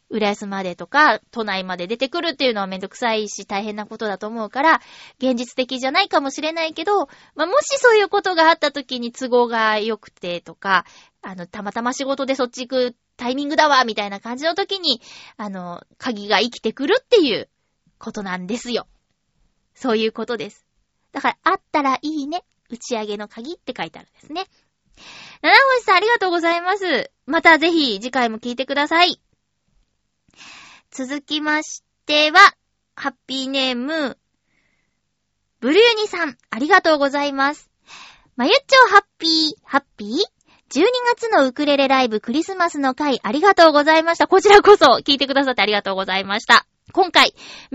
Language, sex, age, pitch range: Japanese, female, 20-39, 235-345 Hz